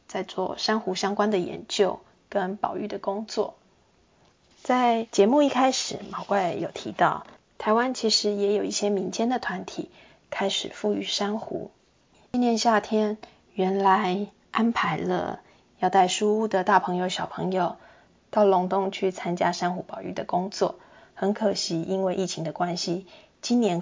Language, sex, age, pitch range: Chinese, female, 20-39, 180-220 Hz